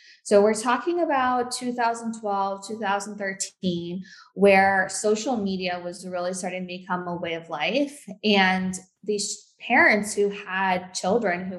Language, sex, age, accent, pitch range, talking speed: English, female, 20-39, American, 175-200 Hz, 130 wpm